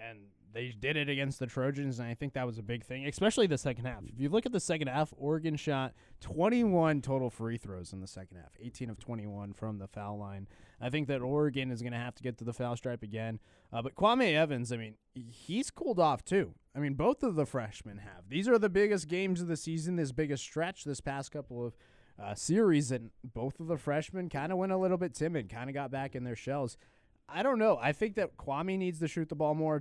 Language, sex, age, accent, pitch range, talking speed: English, male, 20-39, American, 120-155 Hz, 250 wpm